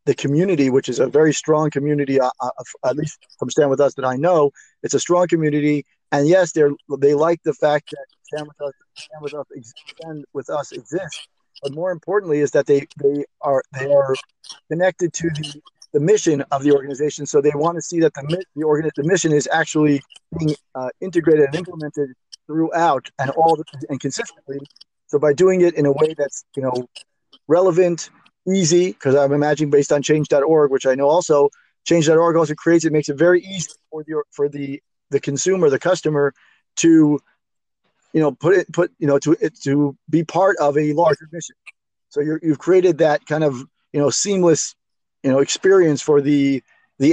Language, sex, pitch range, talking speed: English, male, 145-165 Hz, 195 wpm